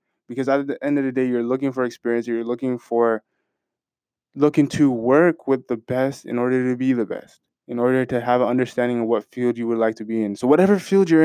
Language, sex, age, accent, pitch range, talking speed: English, male, 20-39, American, 115-135 Hz, 240 wpm